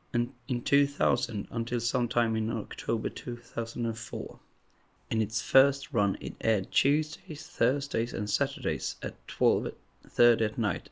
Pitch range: 110-135 Hz